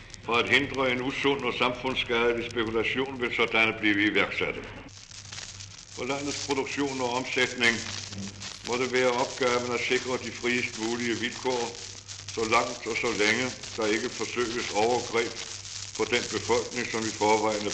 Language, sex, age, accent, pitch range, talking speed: Danish, male, 60-79, German, 105-120 Hz, 145 wpm